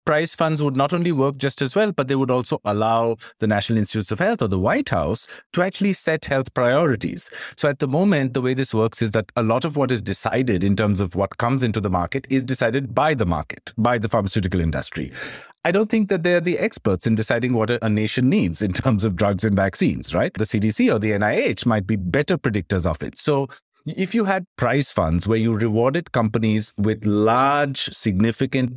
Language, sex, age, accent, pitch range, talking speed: English, male, 50-69, Indian, 110-145 Hz, 220 wpm